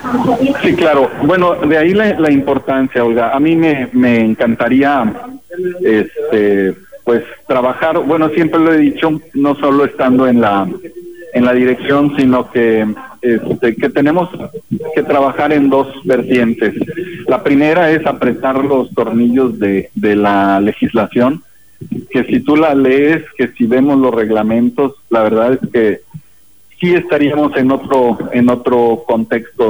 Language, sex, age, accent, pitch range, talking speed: Spanish, male, 50-69, Mexican, 115-150 Hz, 140 wpm